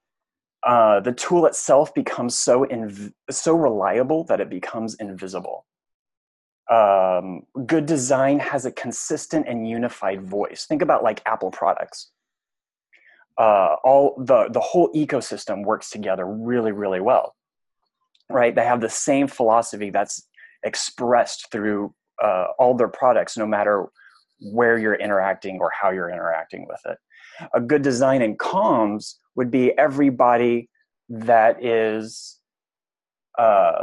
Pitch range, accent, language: 110-135 Hz, American, English